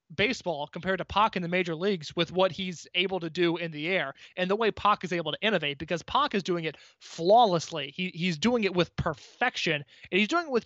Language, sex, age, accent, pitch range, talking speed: English, male, 20-39, American, 165-225 Hz, 235 wpm